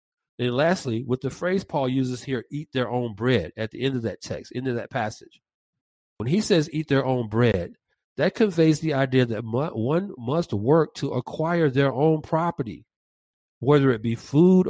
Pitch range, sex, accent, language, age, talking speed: 115-155 Hz, male, American, English, 50-69, 190 wpm